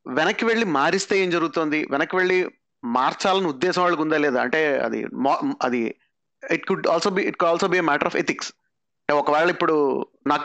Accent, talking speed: native, 155 wpm